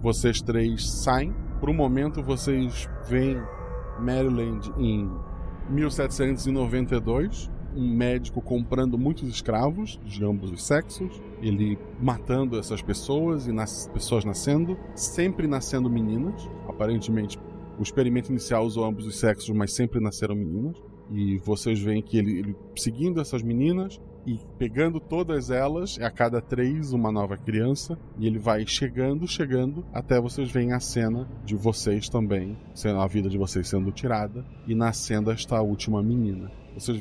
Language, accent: Portuguese, Brazilian